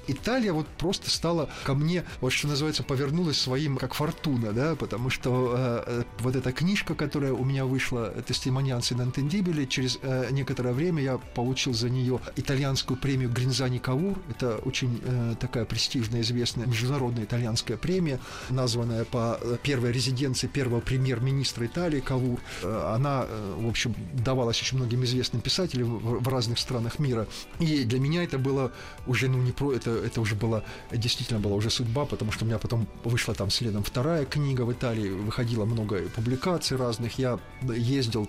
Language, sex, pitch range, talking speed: Russian, male, 115-135 Hz, 165 wpm